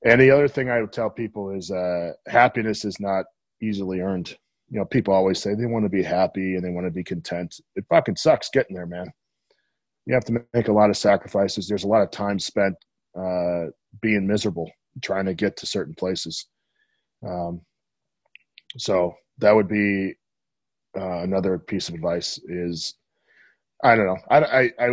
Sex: male